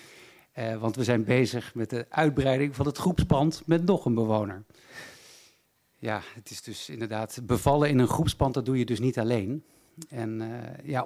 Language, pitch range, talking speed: Dutch, 120-150 Hz, 175 wpm